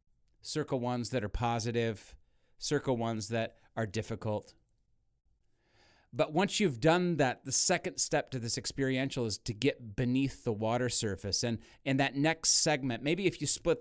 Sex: male